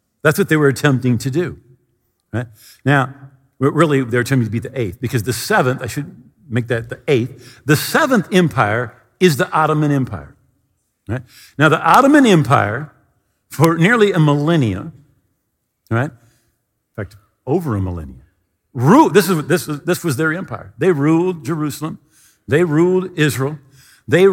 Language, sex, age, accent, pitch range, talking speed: English, male, 50-69, American, 130-175 Hz, 155 wpm